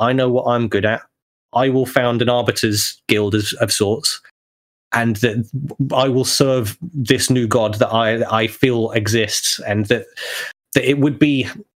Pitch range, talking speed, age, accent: 110-135 Hz, 170 wpm, 30-49, British